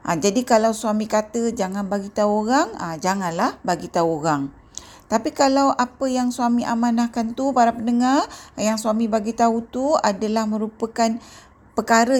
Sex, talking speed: female, 145 wpm